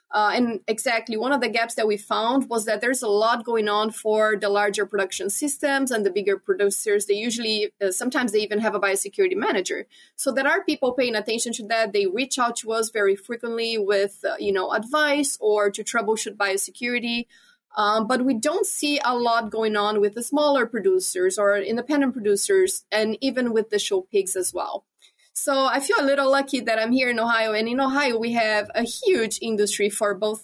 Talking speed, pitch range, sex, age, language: 205 wpm, 205-275 Hz, female, 20-39, English